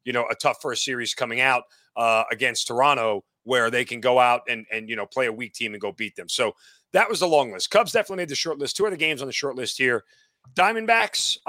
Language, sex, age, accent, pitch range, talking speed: English, male, 40-59, American, 120-155 Hz, 255 wpm